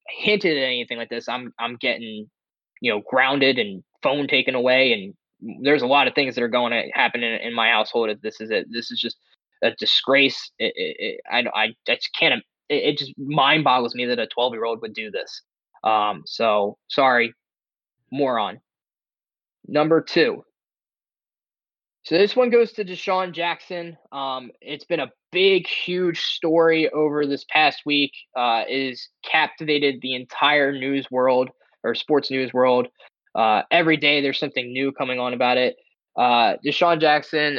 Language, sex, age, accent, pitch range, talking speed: English, male, 10-29, American, 125-150 Hz, 170 wpm